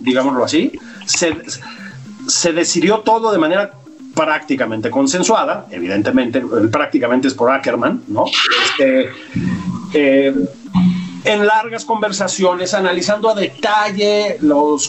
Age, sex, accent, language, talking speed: 40-59, male, Mexican, Spanish, 95 wpm